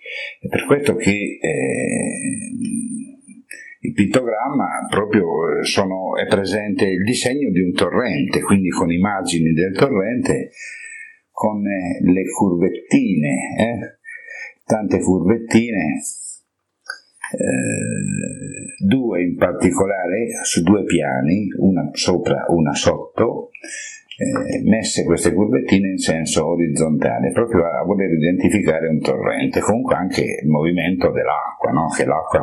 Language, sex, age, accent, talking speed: Italian, male, 50-69, native, 105 wpm